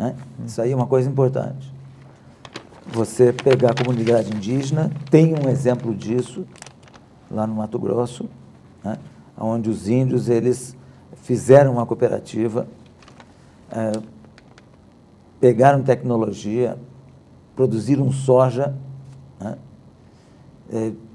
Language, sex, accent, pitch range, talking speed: Portuguese, male, Brazilian, 115-135 Hz, 90 wpm